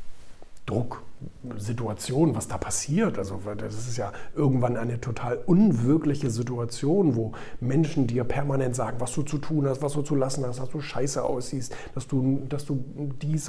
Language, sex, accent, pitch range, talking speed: German, male, German, 120-155 Hz, 165 wpm